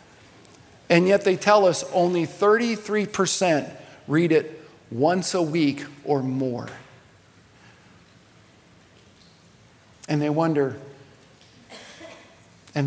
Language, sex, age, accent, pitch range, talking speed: English, male, 50-69, American, 140-200 Hz, 85 wpm